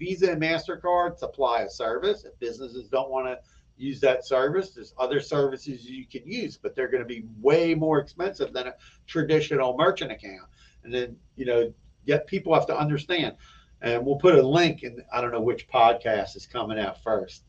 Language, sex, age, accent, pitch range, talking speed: English, male, 50-69, American, 120-150 Hz, 195 wpm